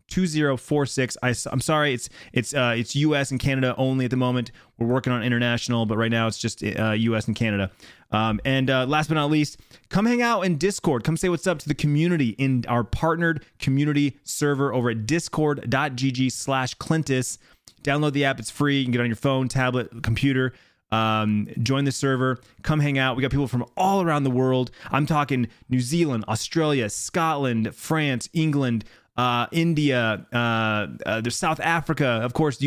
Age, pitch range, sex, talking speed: 30-49, 115-145 Hz, male, 200 wpm